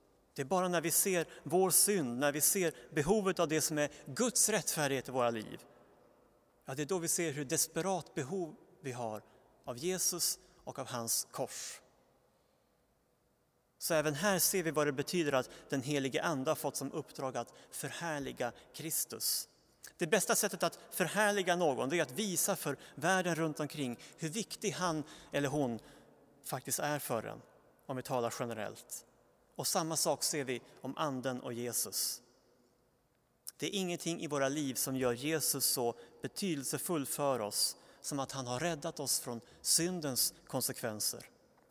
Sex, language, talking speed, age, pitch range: male, Swedish, 165 wpm, 30-49, 130-170 Hz